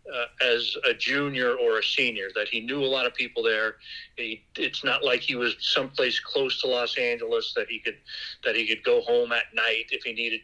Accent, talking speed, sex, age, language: American, 225 wpm, male, 40-59, English